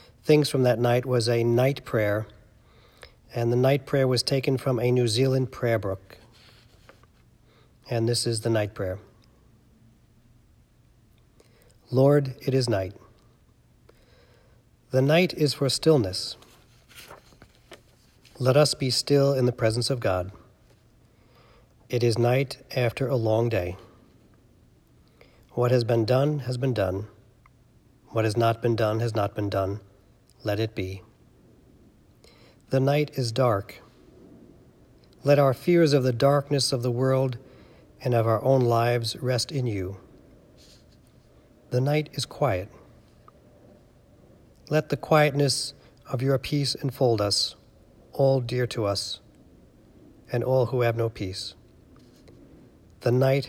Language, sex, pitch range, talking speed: English, male, 110-130 Hz, 130 wpm